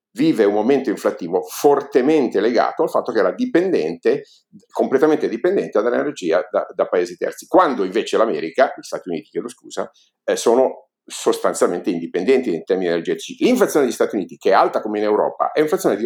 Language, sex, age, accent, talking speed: Italian, male, 50-69, native, 170 wpm